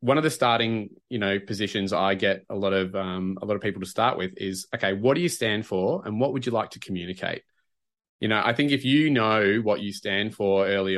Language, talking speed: English, 250 wpm